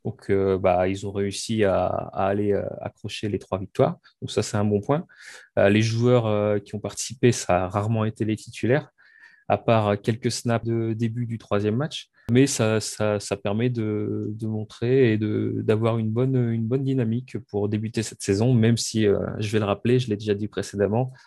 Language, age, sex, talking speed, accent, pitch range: French, 30-49, male, 195 wpm, French, 105-120 Hz